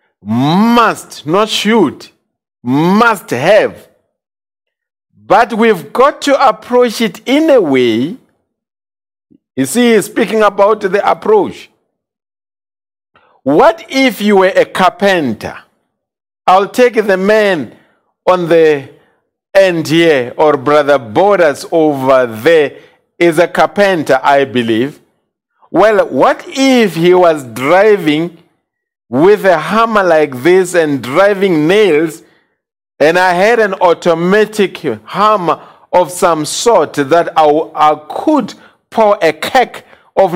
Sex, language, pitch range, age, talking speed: male, English, 155-215 Hz, 50-69, 110 wpm